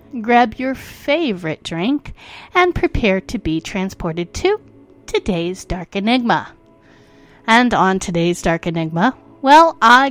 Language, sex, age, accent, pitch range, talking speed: English, female, 30-49, American, 175-250 Hz, 120 wpm